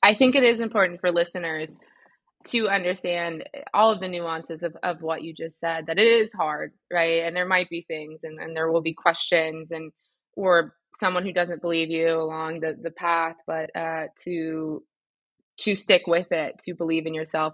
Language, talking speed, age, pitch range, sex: English, 195 wpm, 20-39, 160-180 Hz, female